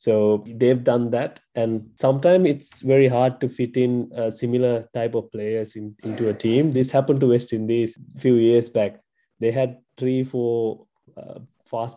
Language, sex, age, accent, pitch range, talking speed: English, male, 20-39, Indian, 115-130 Hz, 180 wpm